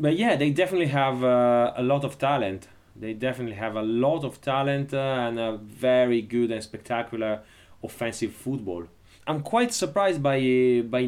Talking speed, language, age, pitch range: 170 wpm, English, 30-49, 105-135 Hz